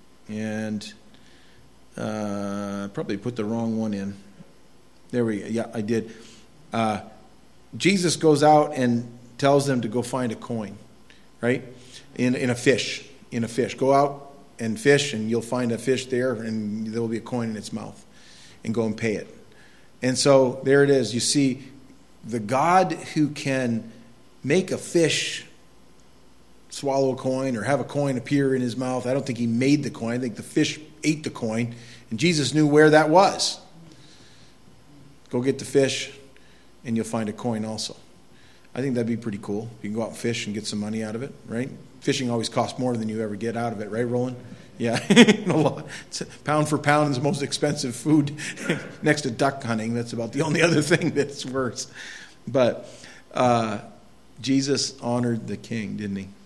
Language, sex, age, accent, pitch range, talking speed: English, male, 40-59, American, 115-140 Hz, 185 wpm